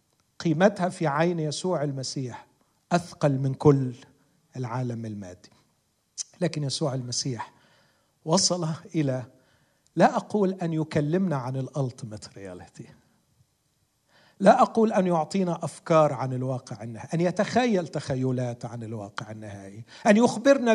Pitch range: 125-185 Hz